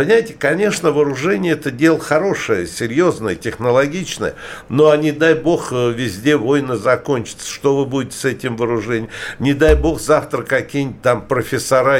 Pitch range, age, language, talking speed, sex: 125-155 Hz, 60-79, Russian, 150 wpm, male